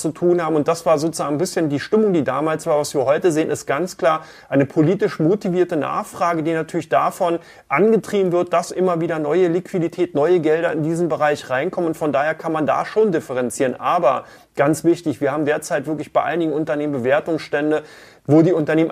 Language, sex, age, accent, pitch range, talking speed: German, male, 30-49, German, 150-175 Hz, 200 wpm